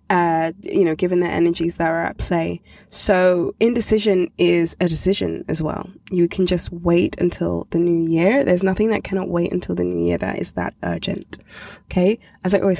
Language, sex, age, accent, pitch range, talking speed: English, female, 20-39, British, 170-195 Hz, 195 wpm